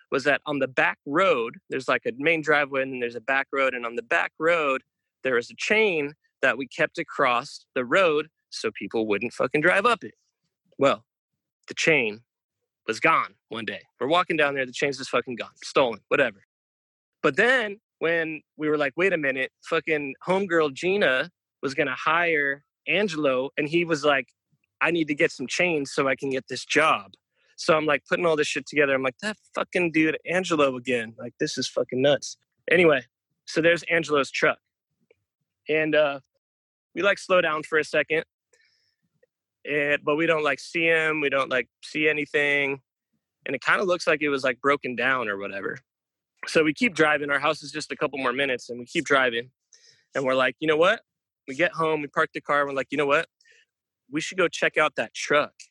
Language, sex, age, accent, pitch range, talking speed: English, male, 20-39, American, 130-165 Hz, 205 wpm